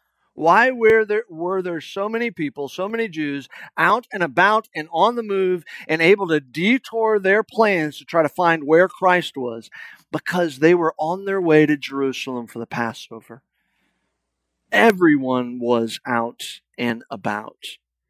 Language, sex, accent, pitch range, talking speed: English, male, American, 125-175 Hz, 155 wpm